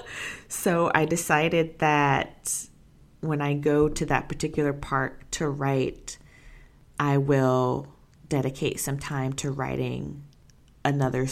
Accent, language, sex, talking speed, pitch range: American, English, female, 110 wpm, 140-170 Hz